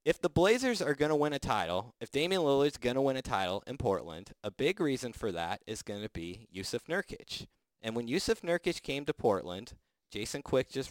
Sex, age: male, 30-49